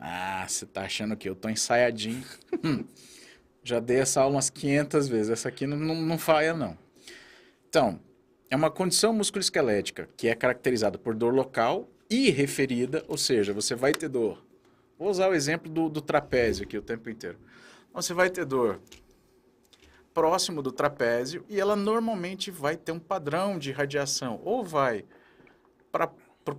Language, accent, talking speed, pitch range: Portuguese, Brazilian, 165 wpm, 130-195 Hz